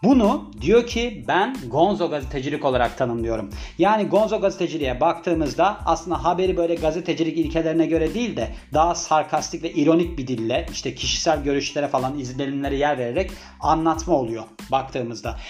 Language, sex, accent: Turkish, male, native